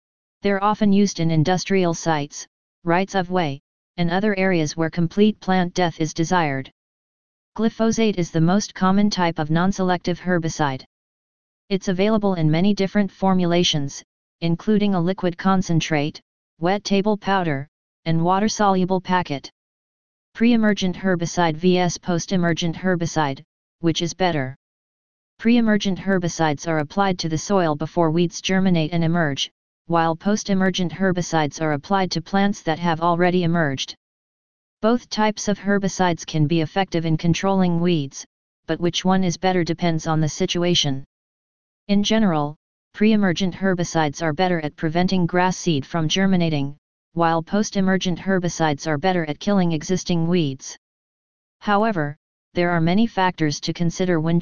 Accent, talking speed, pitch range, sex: American, 130 wpm, 160-190 Hz, female